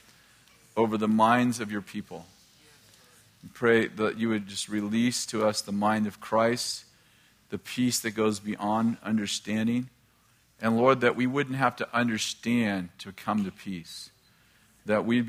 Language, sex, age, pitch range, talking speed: English, male, 40-59, 105-120 Hz, 155 wpm